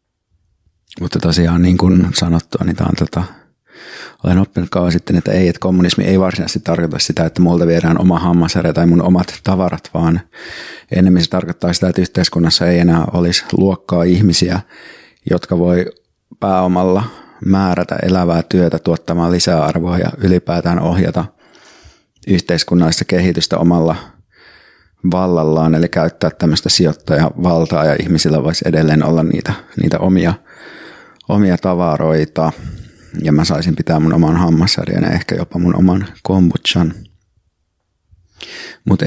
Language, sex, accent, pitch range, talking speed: Finnish, male, native, 85-95 Hz, 125 wpm